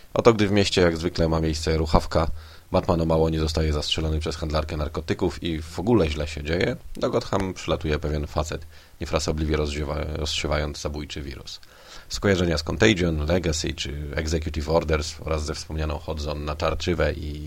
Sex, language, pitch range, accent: male, Polish, 75-85 Hz, native